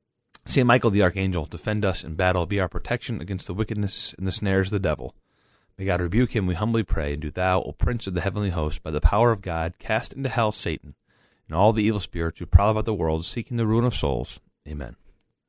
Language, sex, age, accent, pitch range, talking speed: English, male, 30-49, American, 95-125 Hz, 240 wpm